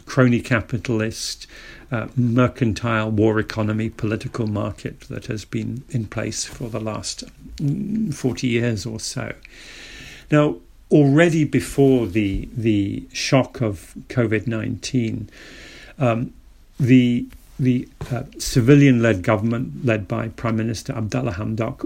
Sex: male